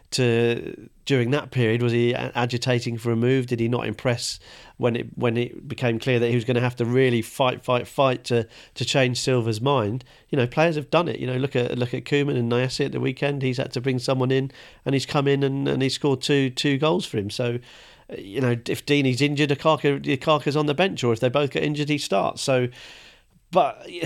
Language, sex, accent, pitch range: English, male, British, 120-145 Hz